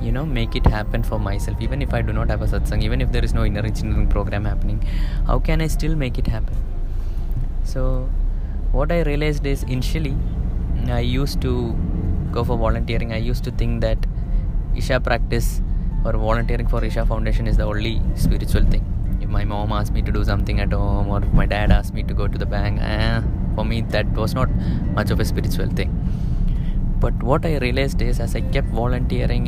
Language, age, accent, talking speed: English, 20-39, Indian, 205 wpm